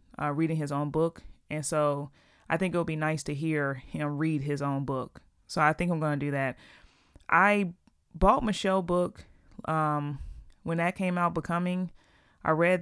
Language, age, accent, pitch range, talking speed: English, 30-49, American, 140-165 Hz, 185 wpm